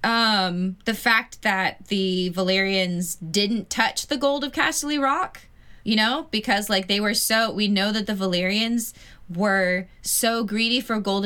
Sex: female